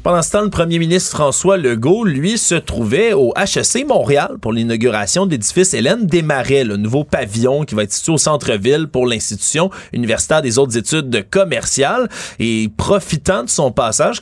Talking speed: 175 wpm